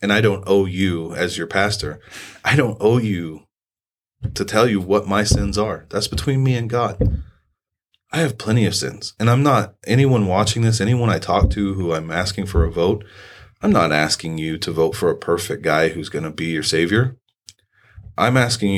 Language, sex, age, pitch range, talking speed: English, male, 30-49, 85-110 Hz, 200 wpm